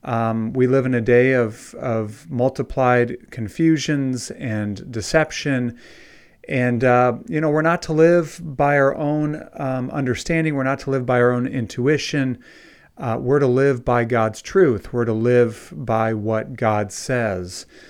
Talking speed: 160 wpm